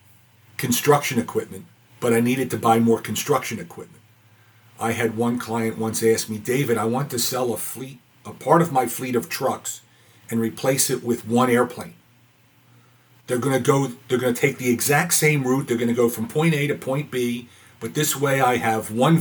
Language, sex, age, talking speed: English, male, 50-69, 205 wpm